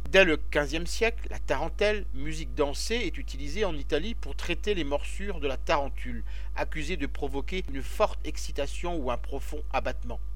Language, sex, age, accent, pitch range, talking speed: French, male, 50-69, French, 145-195 Hz, 170 wpm